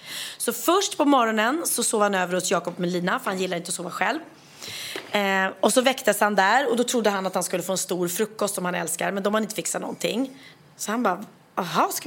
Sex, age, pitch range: female, 30-49, 190-245 Hz